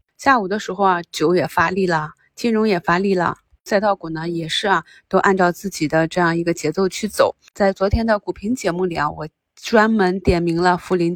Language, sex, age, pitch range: Chinese, female, 20-39, 170-205 Hz